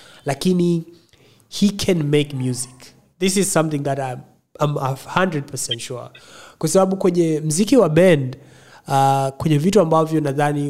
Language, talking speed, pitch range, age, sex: Swahili, 135 wpm, 125-160 Hz, 30-49, male